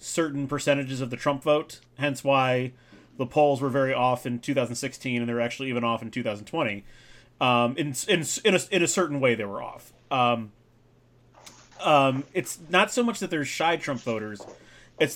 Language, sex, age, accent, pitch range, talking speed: English, male, 30-49, American, 125-160 Hz, 180 wpm